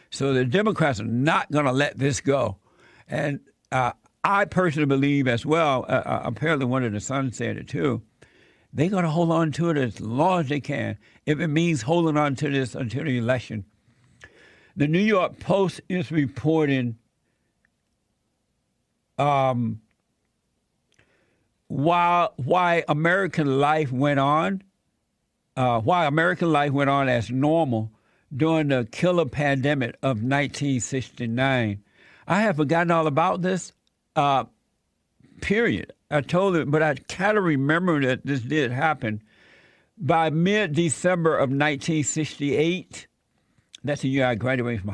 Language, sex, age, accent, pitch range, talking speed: English, male, 60-79, American, 130-165 Hz, 140 wpm